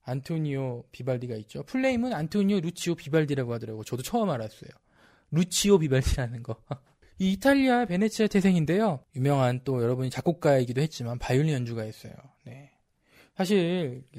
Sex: male